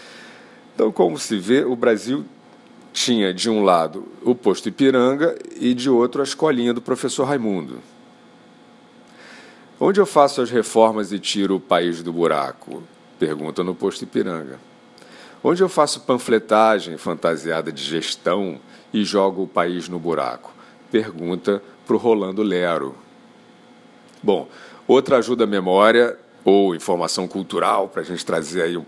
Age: 50-69